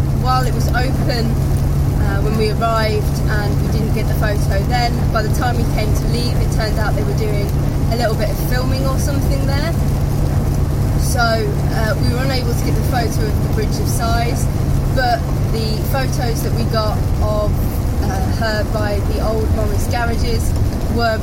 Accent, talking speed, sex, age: British, 185 wpm, female, 20-39